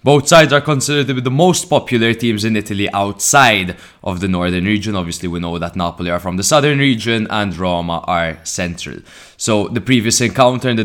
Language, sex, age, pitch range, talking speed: English, male, 20-39, 95-120 Hz, 205 wpm